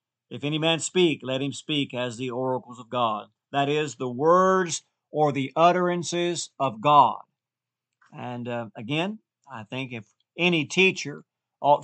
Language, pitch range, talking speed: English, 125-155 Hz, 150 wpm